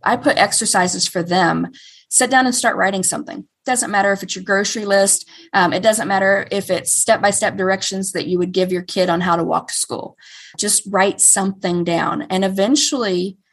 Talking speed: 200 wpm